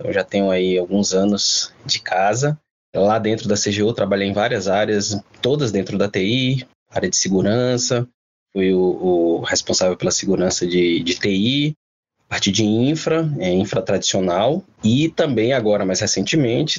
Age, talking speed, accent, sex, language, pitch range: 20-39, 155 wpm, Brazilian, male, Portuguese, 100-145 Hz